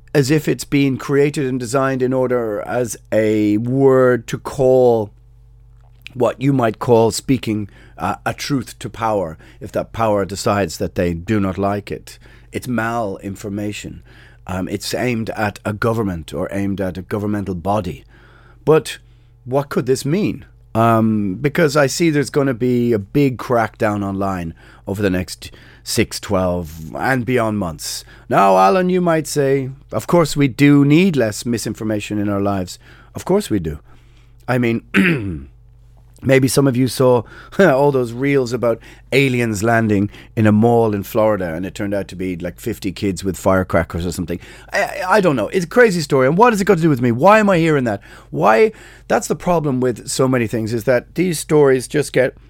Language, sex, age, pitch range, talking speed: English, male, 30-49, 105-135 Hz, 180 wpm